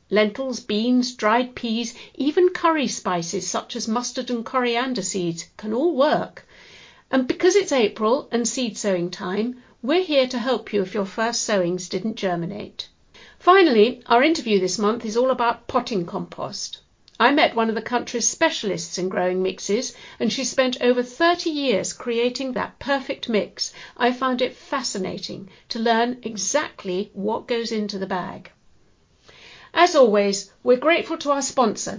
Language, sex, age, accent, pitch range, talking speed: English, female, 50-69, British, 205-260 Hz, 160 wpm